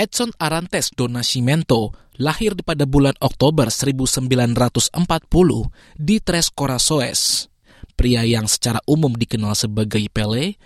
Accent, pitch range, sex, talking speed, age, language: Indonesian, 115-150 Hz, male, 105 wpm, 20-39, English